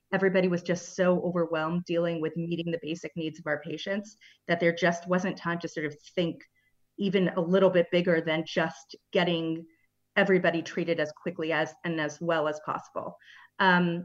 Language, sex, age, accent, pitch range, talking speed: English, female, 30-49, American, 160-190 Hz, 180 wpm